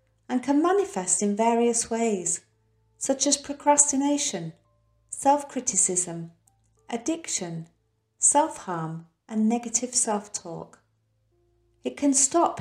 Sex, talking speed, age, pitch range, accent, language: female, 85 wpm, 40-59, 165-250 Hz, British, English